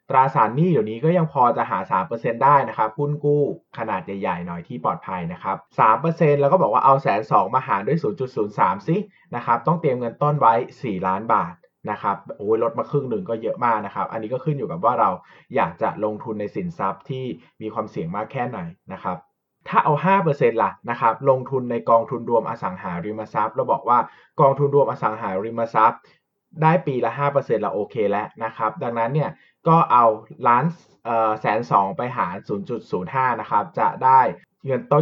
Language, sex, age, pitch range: Thai, male, 20-39, 110-150 Hz